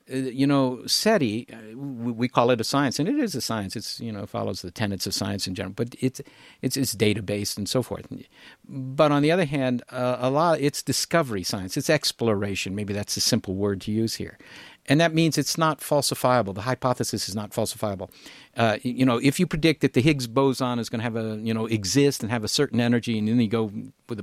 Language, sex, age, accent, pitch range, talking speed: English, male, 50-69, American, 110-150 Hz, 225 wpm